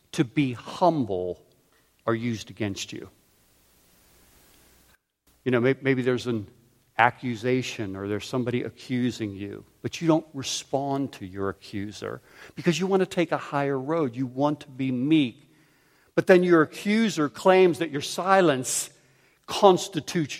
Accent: American